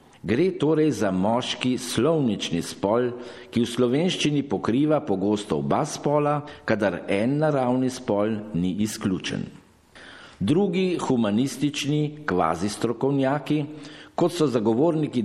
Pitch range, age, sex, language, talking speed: 105-150 Hz, 50-69, male, Italian, 100 wpm